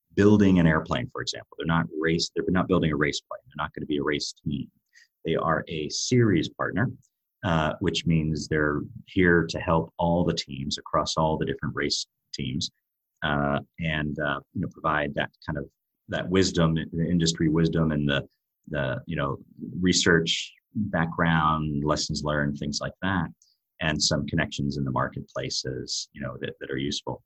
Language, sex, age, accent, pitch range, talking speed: English, male, 30-49, American, 75-90 Hz, 175 wpm